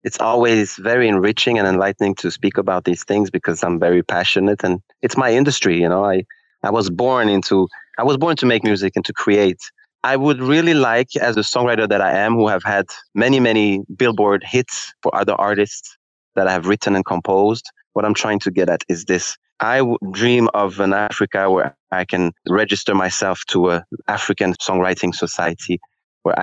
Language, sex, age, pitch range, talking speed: English, male, 20-39, 90-115 Hz, 195 wpm